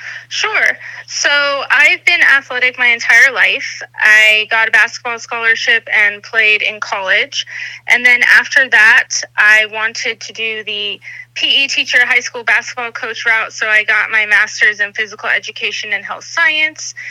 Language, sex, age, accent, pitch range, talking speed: English, female, 20-39, American, 210-250 Hz, 155 wpm